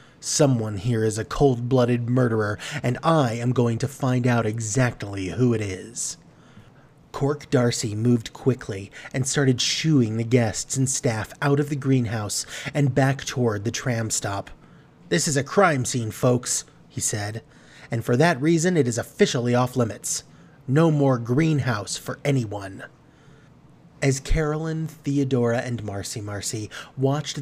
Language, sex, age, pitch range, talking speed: English, male, 30-49, 120-145 Hz, 145 wpm